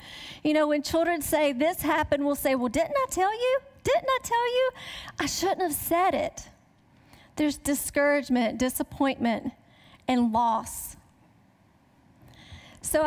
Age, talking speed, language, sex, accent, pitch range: 40-59, 135 wpm, English, female, American, 260-320 Hz